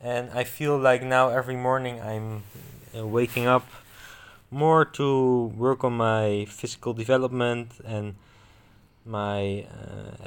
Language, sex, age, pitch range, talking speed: English, male, 20-39, 110-140 Hz, 115 wpm